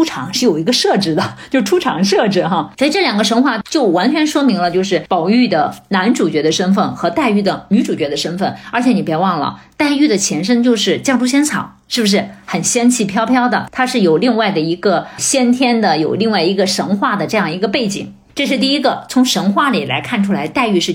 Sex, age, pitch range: female, 50-69, 195-255 Hz